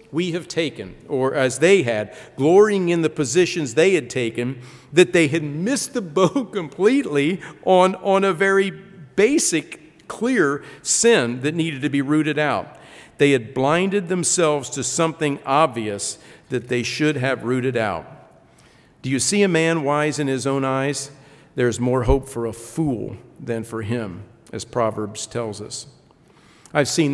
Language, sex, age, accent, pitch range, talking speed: English, male, 50-69, American, 130-165 Hz, 160 wpm